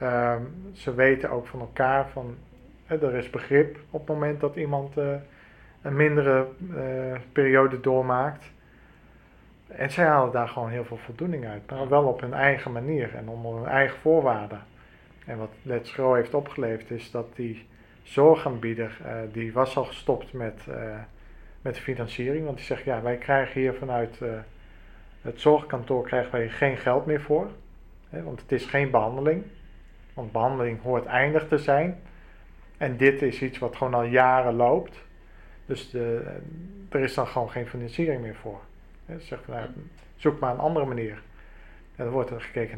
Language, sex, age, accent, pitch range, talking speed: Dutch, male, 40-59, Dutch, 115-140 Hz, 165 wpm